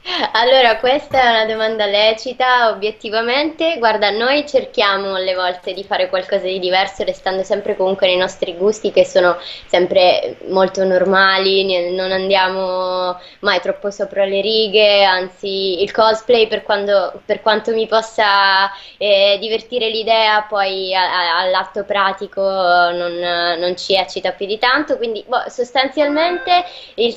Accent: native